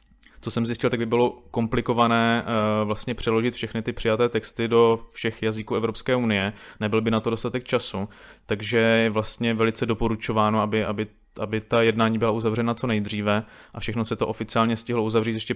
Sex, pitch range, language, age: male, 110-115 Hz, Czech, 20-39